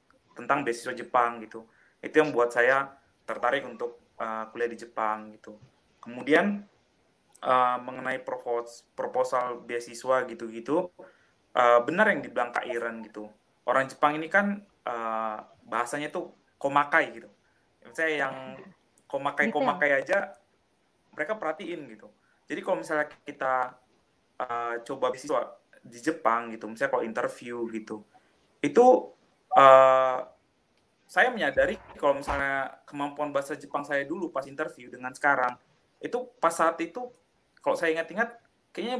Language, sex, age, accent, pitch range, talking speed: Indonesian, male, 20-39, native, 125-180 Hz, 125 wpm